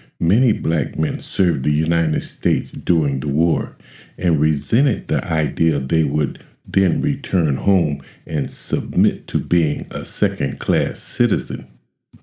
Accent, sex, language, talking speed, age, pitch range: American, male, English, 130 wpm, 50-69, 75-100 Hz